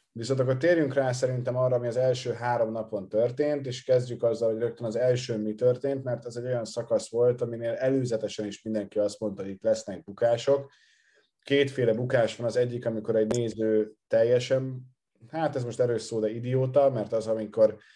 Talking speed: 185 wpm